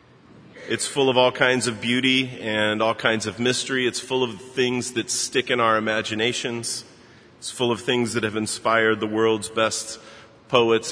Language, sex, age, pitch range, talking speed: English, male, 30-49, 105-115 Hz, 175 wpm